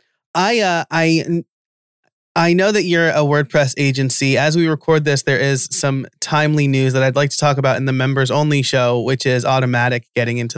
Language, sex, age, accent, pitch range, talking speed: English, male, 20-39, American, 130-155 Hz, 195 wpm